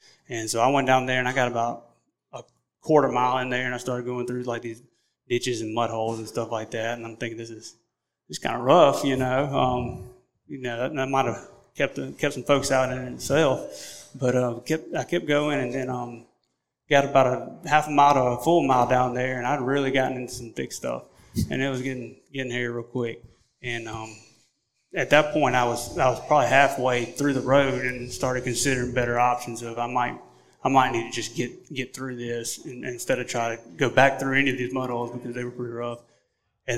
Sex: male